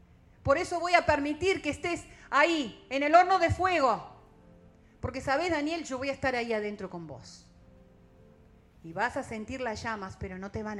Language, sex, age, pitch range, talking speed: Spanish, female, 40-59, 185-300 Hz, 190 wpm